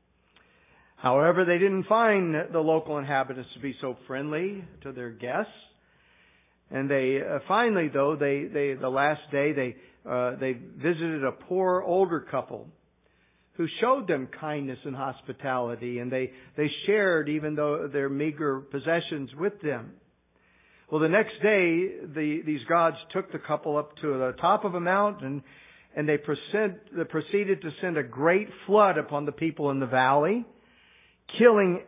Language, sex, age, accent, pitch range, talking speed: English, male, 50-69, American, 135-185 Hz, 155 wpm